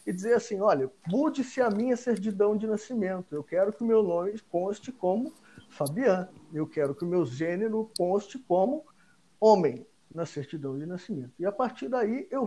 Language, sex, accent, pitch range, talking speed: Portuguese, male, Brazilian, 160-225 Hz, 180 wpm